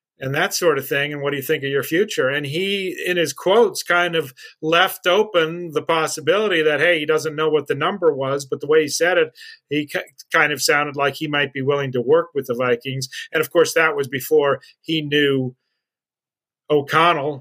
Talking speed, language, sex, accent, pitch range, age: 215 wpm, English, male, American, 135-165 Hz, 40-59